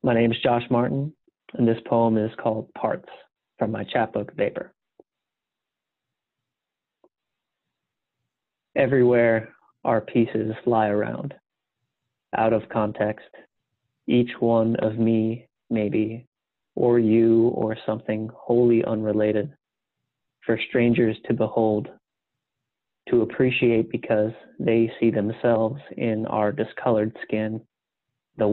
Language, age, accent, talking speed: English, 30-49, American, 105 wpm